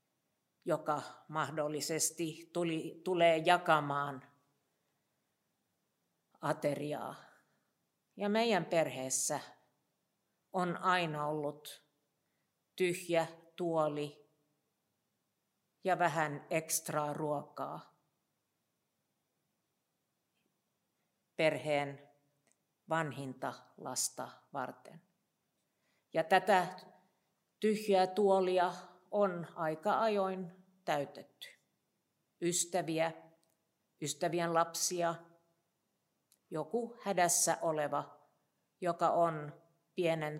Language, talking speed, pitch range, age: Finnish, 60 wpm, 150-185 Hz, 50-69